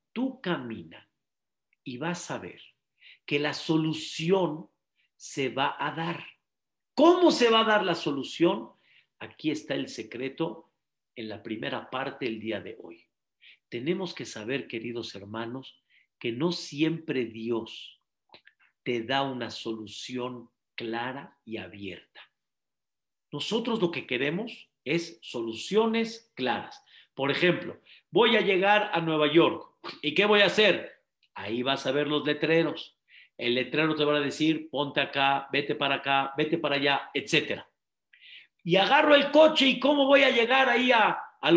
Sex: male